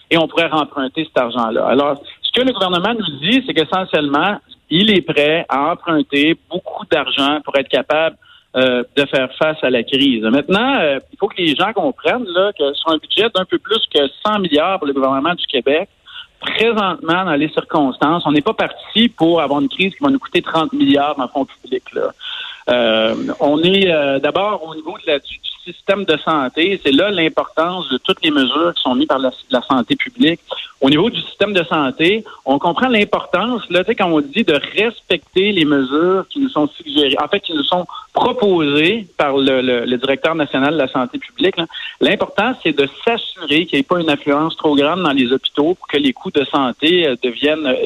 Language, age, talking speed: French, 50-69, 210 wpm